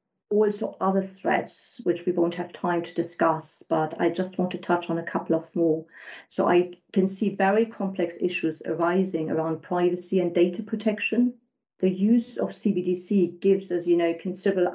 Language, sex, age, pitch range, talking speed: English, female, 50-69, 170-195 Hz, 175 wpm